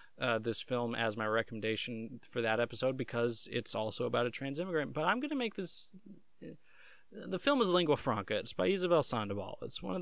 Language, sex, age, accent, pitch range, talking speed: English, male, 20-39, American, 115-150 Hz, 210 wpm